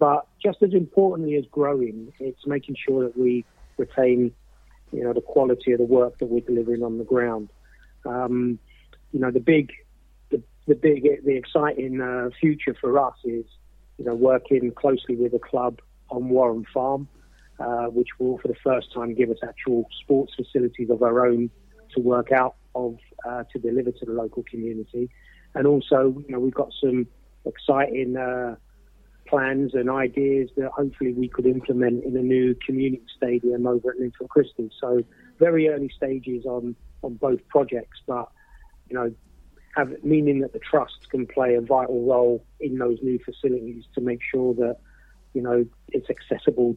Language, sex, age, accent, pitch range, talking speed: English, male, 30-49, British, 120-135 Hz, 175 wpm